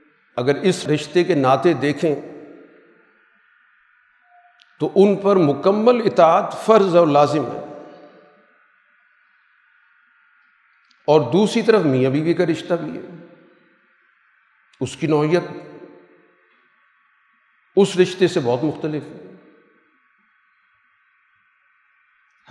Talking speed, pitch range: 90 wpm, 140-190 Hz